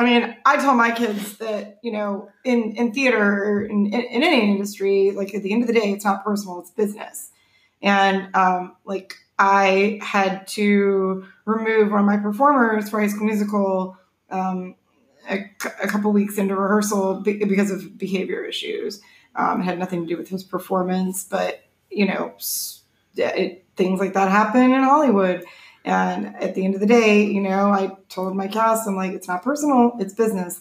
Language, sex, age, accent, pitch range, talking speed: English, female, 20-39, American, 190-220 Hz, 180 wpm